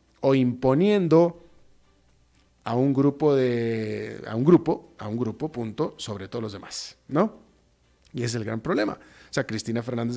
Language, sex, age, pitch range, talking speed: Spanish, male, 40-59, 105-140 Hz, 140 wpm